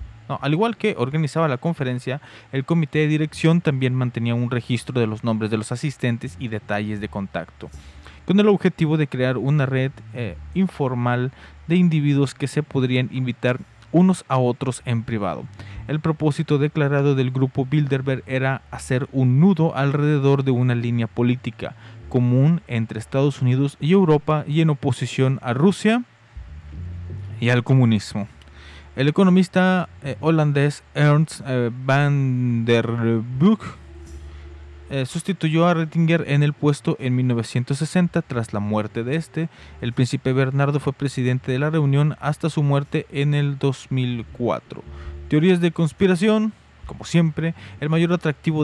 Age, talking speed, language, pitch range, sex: 30-49, 145 wpm, Spanish, 115-155 Hz, male